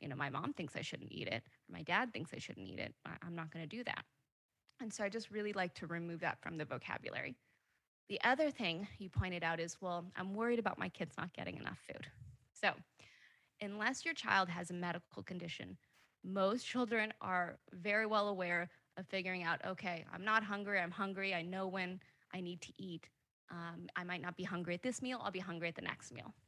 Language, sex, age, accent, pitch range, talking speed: English, female, 20-39, American, 175-220 Hz, 220 wpm